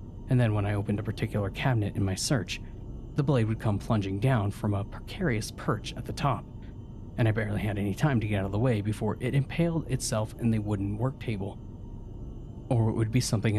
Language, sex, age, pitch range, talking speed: English, male, 30-49, 105-120 Hz, 220 wpm